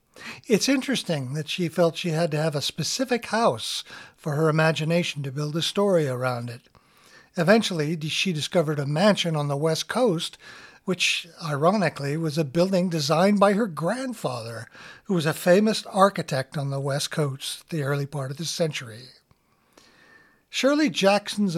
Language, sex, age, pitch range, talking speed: English, male, 60-79, 145-190 Hz, 155 wpm